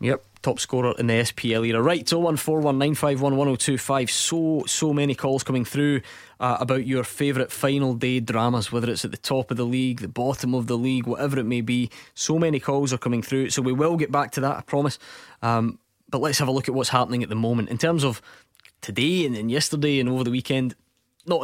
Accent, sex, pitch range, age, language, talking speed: British, male, 120-140 Hz, 20-39, English, 215 wpm